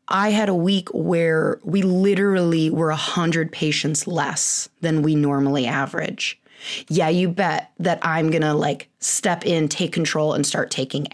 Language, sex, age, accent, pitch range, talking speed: English, female, 20-39, American, 160-215 Hz, 160 wpm